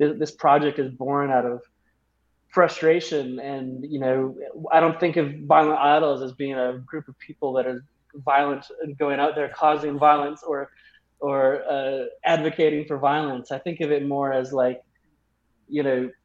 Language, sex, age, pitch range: English, male, 20-39, 125-150 Hz